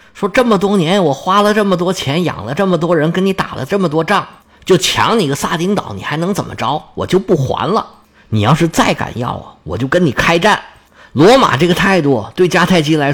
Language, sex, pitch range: Chinese, male, 115-180 Hz